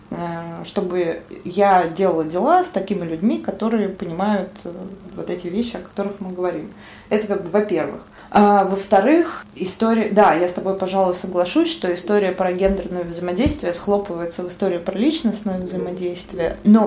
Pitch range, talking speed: 180-205 Hz, 145 wpm